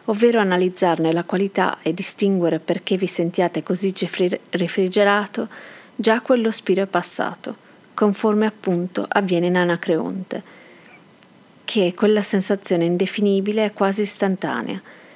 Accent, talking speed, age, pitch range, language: native, 115 wpm, 40-59, 180-210 Hz, Italian